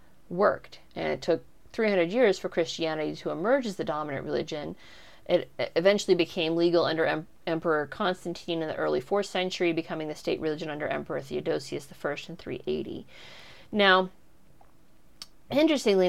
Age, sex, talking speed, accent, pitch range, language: 30-49, female, 140 wpm, American, 160-200 Hz, English